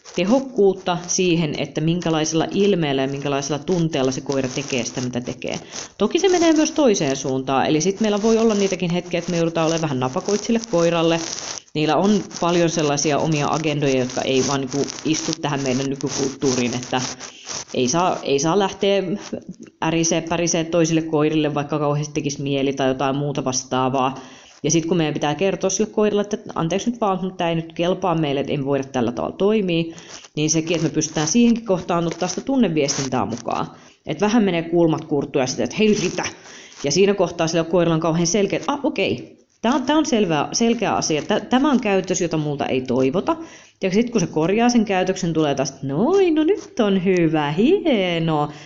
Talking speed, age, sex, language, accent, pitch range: 185 wpm, 30-49, female, Finnish, native, 145-205 Hz